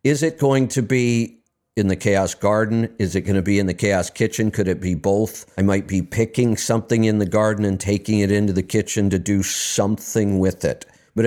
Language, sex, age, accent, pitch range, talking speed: English, male, 50-69, American, 95-120 Hz, 225 wpm